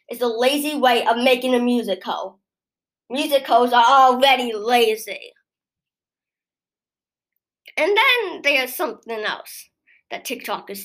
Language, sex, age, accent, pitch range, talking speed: English, female, 20-39, American, 230-320 Hz, 105 wpm